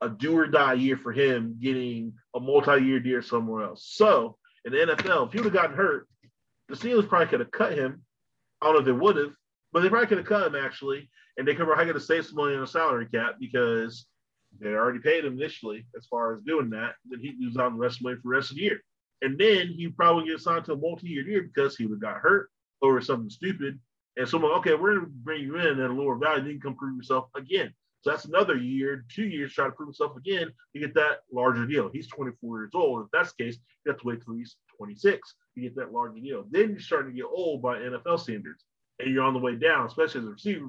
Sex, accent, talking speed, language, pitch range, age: male, American, 265 wpm, English, 125-170 Hz, 30-49